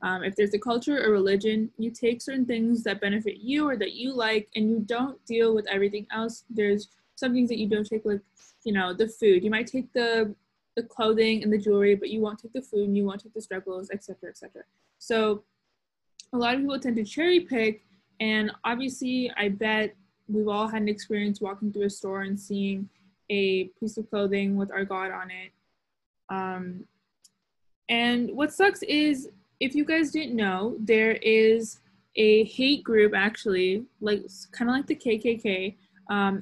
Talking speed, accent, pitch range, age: 195 wpm, American, 200-235 Hz, 20-39